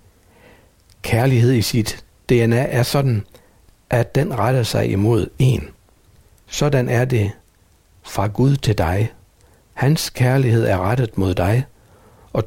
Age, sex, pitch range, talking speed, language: 60-79, male, 100-125 Hz, 125 wpm, Danish